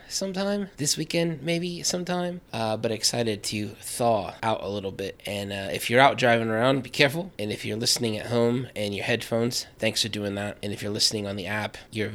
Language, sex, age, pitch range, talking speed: English, male, 20-39, 105-130 Hz, 215 wpm